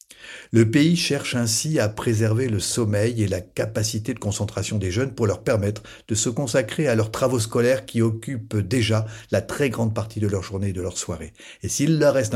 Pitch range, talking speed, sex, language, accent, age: 100-115 Hz, 210 wpm, male, French, French, 50-69